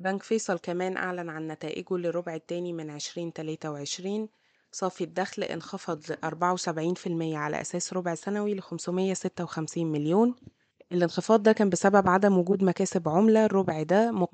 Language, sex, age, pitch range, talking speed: Arabic, female, 20-39, 170-195 Hz, 155 wpm